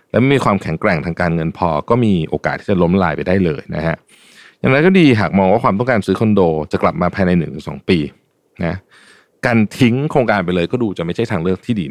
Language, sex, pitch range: Thai, male, 85-120 Hz